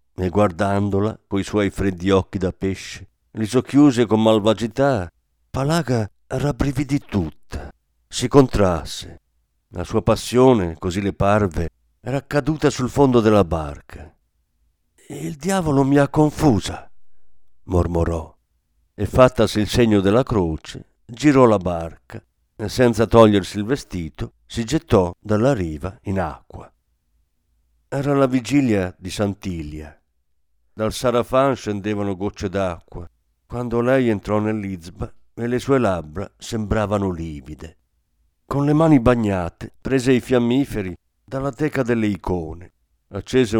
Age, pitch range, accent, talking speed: 50-69, 85-125 Hz, native, 120 wpm